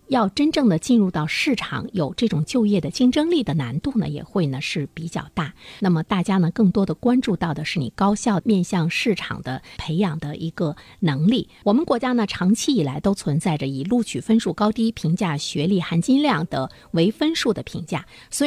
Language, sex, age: Chinese, female, 50-69